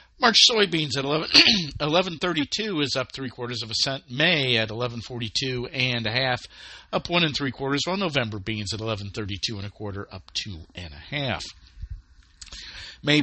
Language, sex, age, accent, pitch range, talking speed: English, male, 50-69, American, 110-150 Hz, 165 wpm